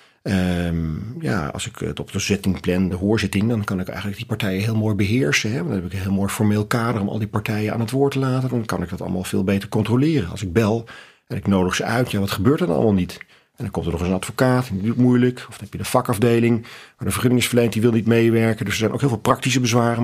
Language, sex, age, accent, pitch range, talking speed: Dutch, male, 40-59, Dutch, 95-120 Hz, 285 wpm